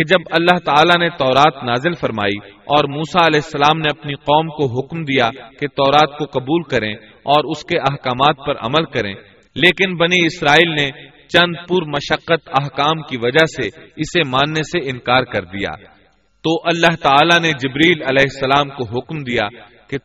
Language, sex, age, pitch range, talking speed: Urdu, male, 30-49, 130-155 Hz, 170 wpm